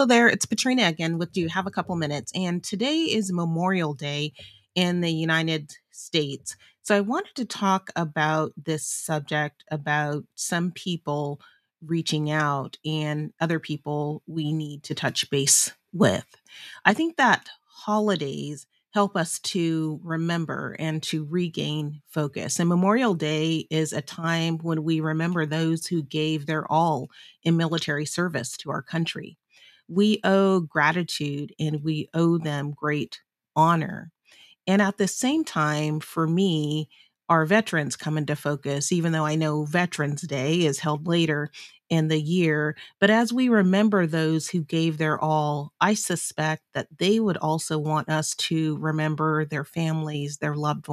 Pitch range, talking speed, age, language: 150-175 Hz, 155 wpm, 30-49, English